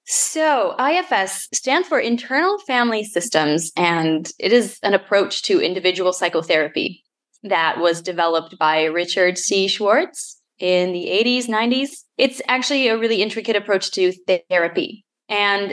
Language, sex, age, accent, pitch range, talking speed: English, female, 20-39, American, 185-245 Hz, 135 wpm